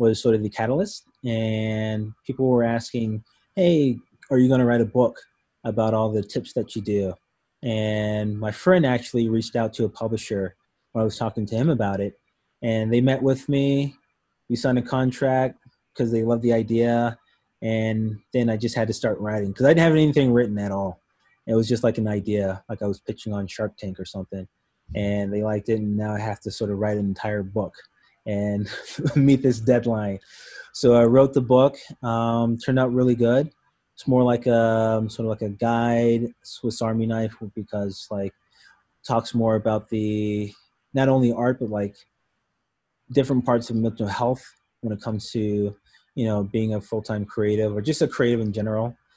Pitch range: 105-125 Hz